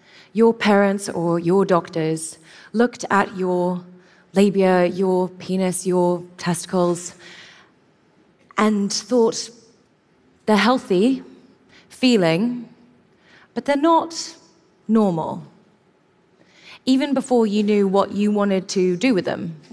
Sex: female